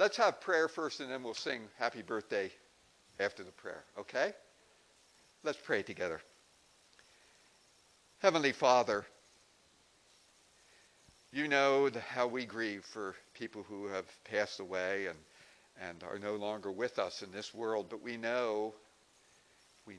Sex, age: male, 60-79